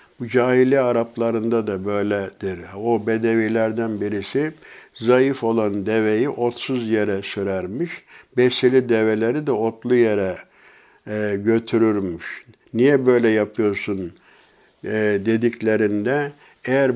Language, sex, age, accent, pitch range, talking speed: Turkish, male, 60-79, native, 105-125 Hz, 90 wpm